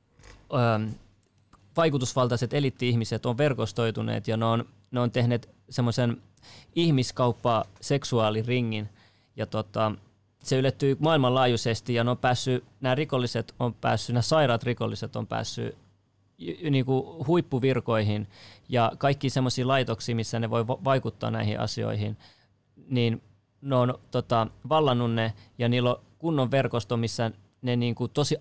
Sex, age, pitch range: male, 20-39, 110-130 Hz